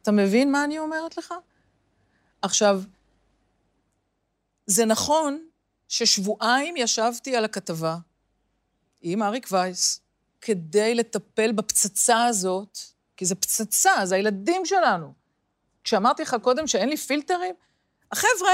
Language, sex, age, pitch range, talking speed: Hebrew, female, 40-59, 215-340 Hz, 105 wpm